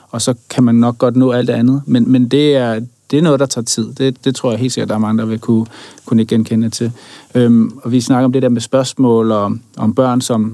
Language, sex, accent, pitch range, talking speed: Danish, male, native, 115-135 Hz, 285 wpm